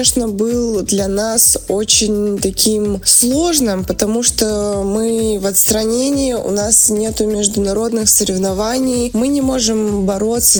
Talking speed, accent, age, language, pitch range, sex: 115 wpm, native, 20-39, Russian, 195-235 Hz, female